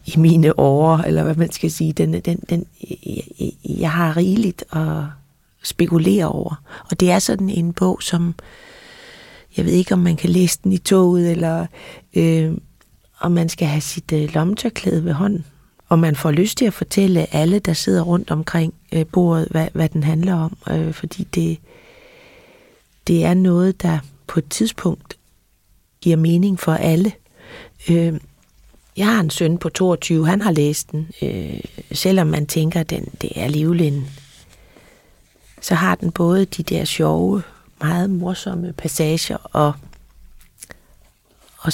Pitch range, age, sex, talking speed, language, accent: 155-180 Hz, 30-49, female, 160 wpm, Danish, native